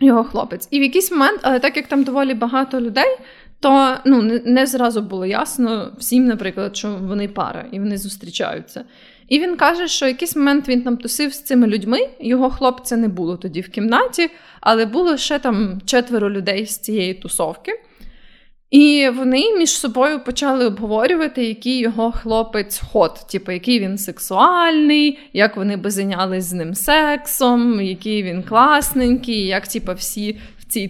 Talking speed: 165 wpm